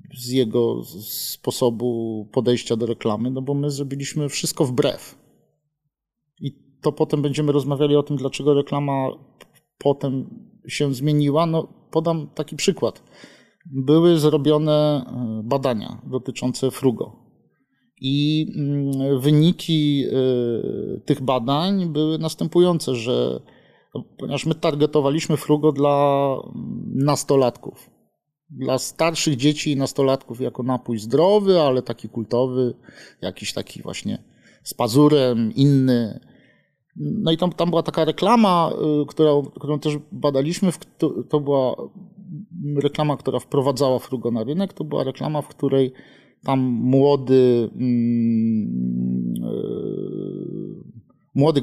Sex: male